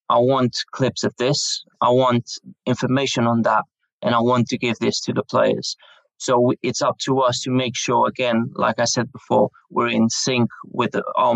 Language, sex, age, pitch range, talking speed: English, male, 20-39, 120-135 Hz, 195 wpm